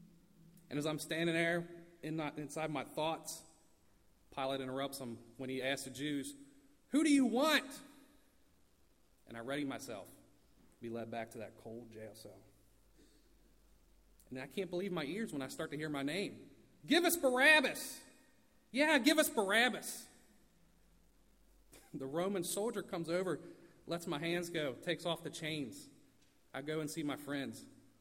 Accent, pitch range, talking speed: American, 125-195 Hz, 160 wpm